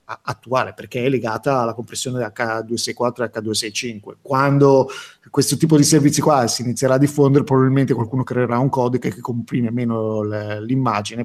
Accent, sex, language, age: native, male, Italian, 30-49